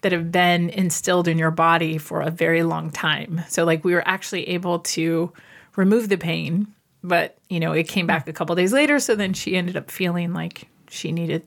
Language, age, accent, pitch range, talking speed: English, 30-49, American, 165-190 Hz, 215 wpm